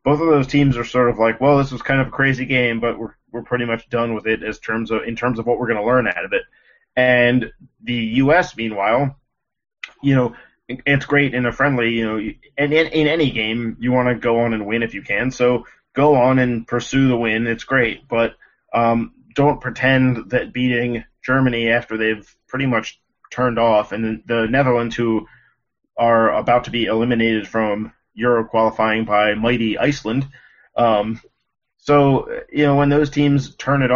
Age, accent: 20-39, American